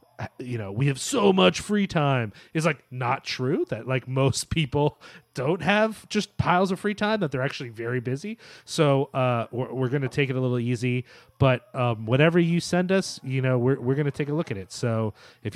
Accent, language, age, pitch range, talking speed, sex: American, English, 30-49, 125-155 Hz, 225 wpm, male